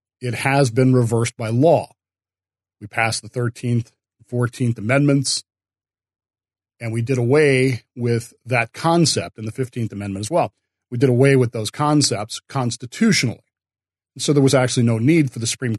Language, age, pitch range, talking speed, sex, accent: English, 40-59, 100-135 Hz, 160 wpm, male, American